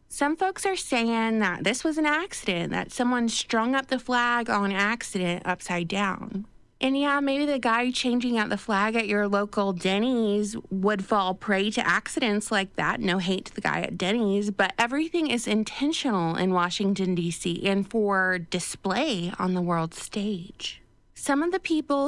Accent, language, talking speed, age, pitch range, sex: American, English, 175 wpm, 30-49, 185-235 Hz, female